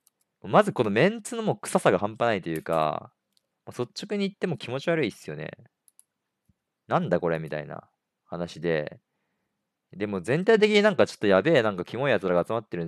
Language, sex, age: Japanese, male, 40-59